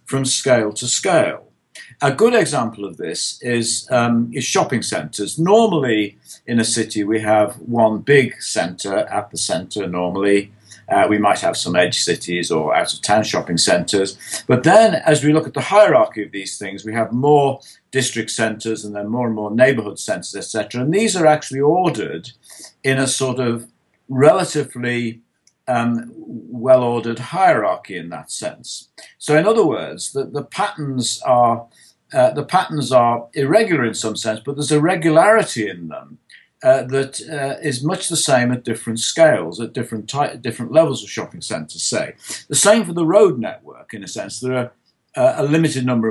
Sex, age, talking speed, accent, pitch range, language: male, 50-69, 175 wpm, British, 110-150 Hz, English